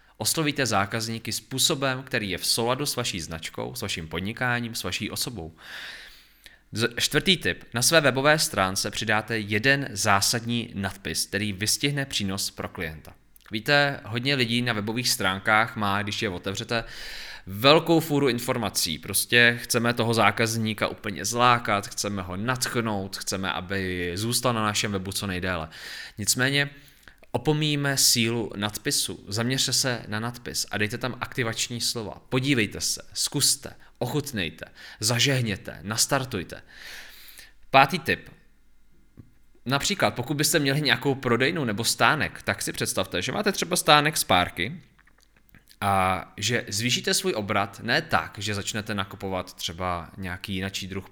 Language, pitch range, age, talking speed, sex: Czech, 100-130 Hz, 20-39, 135 wpm, male